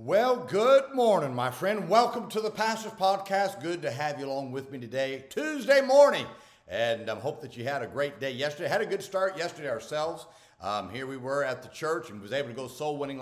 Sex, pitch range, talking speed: male, 125-170 Hz, 225 wpm